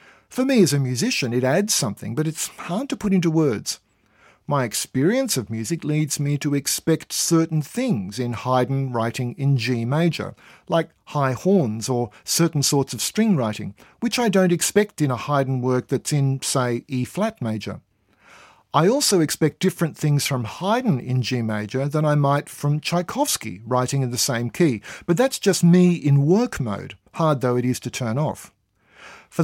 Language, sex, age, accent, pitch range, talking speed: English, male, 50-69, Australian, 125-170 Hz, 180 wpm